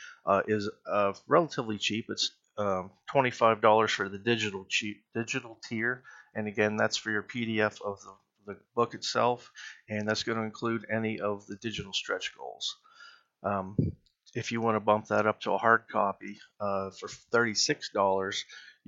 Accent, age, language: American, 40-59, English